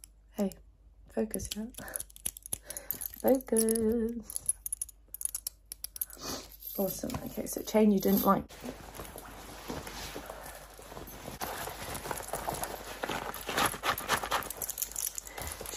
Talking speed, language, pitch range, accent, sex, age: 40 wpm, English, 200-245 Hz, British, female, 30-49